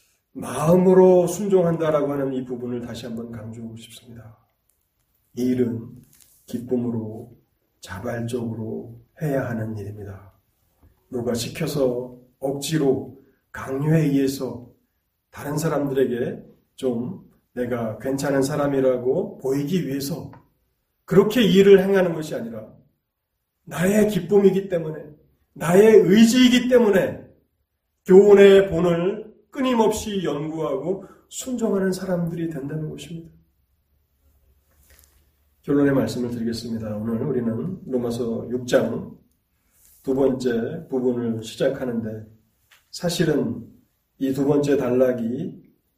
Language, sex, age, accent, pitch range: Korean, male, 30-49, native, 115-160 Hz